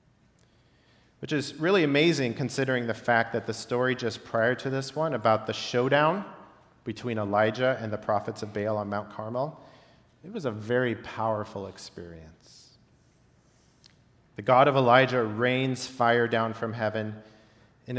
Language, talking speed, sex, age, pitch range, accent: English, 145 wpm, male, 40-59, 110-135 Hz, American